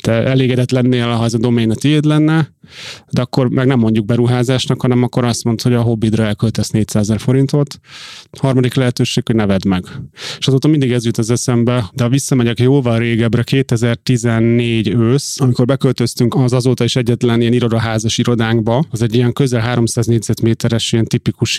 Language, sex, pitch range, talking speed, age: Hungarian, male, 115-130 Hz, 170 wpm, 30-49